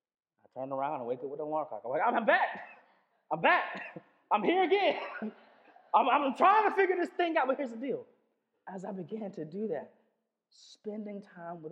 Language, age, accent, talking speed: English, 30-49, American, 200 wpm